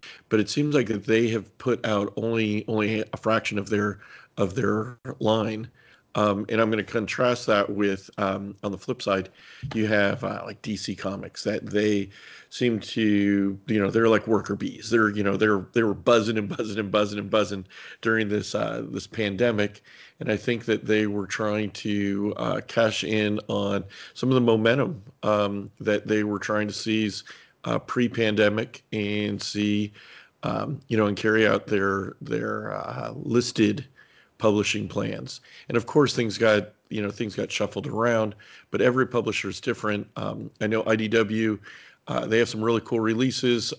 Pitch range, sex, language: 105-115 Hz, male, English